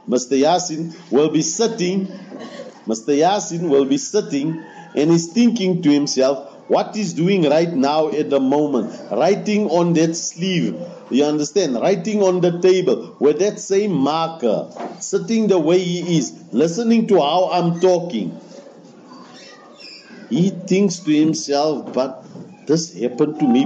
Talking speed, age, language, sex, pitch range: 130 wpm, 50-69, English, male, 145-200 Hz